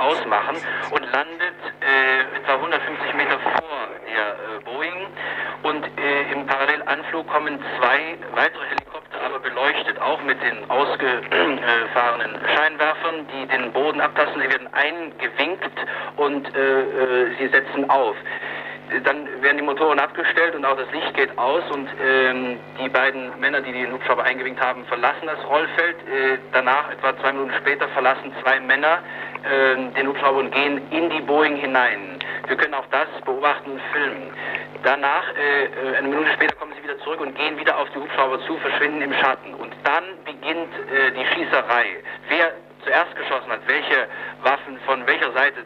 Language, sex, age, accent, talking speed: German, male, 50-69, German, 160 wpm